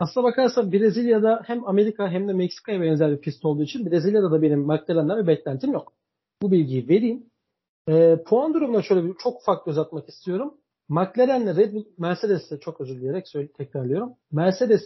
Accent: native